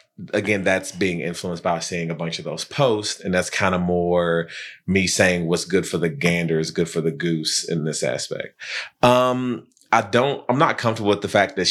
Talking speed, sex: 210 wpm, male